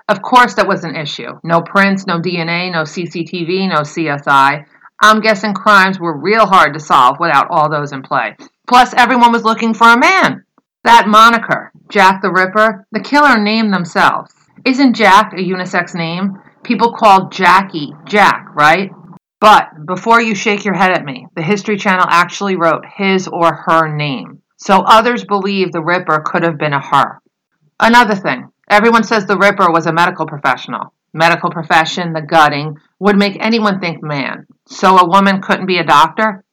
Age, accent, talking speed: 50-69, American, 175 wpm